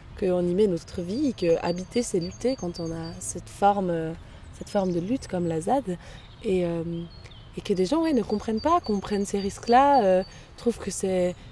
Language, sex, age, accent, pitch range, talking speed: French, female, 20-39, French, 180-230 Hz, 200 wpm